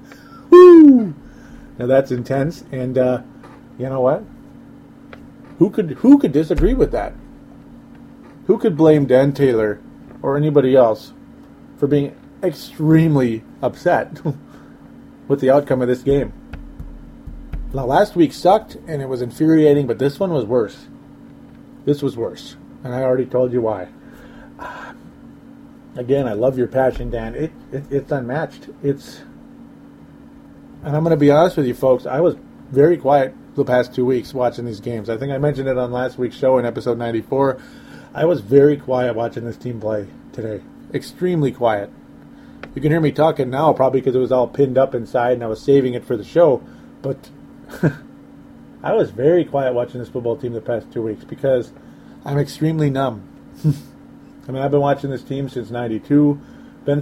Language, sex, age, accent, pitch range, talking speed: English, male, 40-59, American, 125-145 Hz, 165 wpm